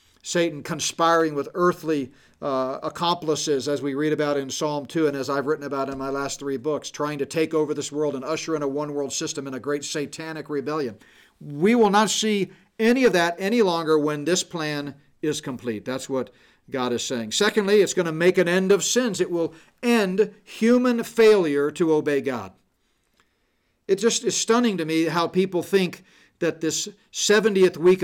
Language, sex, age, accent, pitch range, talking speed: English, male, 50-69, American, 150-200 Hz, 190 wpm